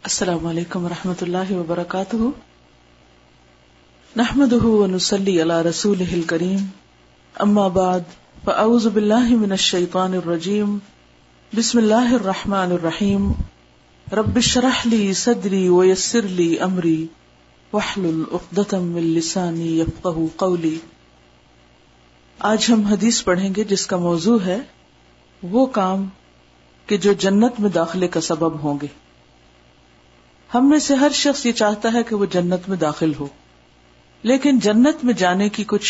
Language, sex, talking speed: Urdu, female, 110 wpm